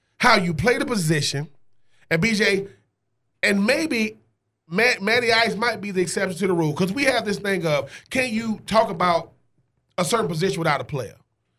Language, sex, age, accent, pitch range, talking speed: English, male, 30-49, American, 150-230 Hz, 175 wpm